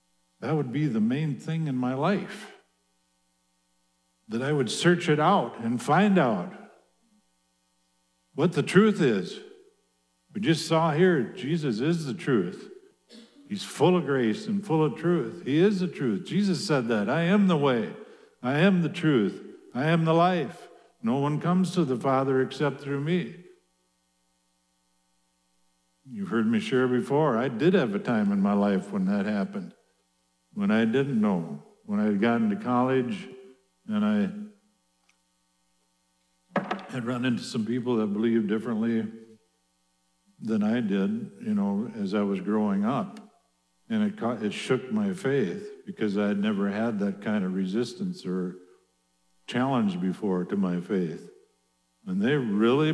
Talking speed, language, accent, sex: 155 wpm, English, American, male